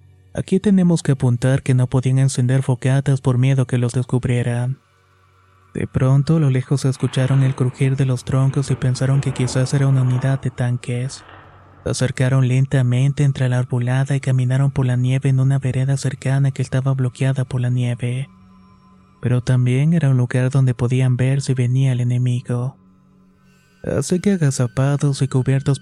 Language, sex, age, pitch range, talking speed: Spanish, male, 30-49, 125-135 Hz, 165 wpm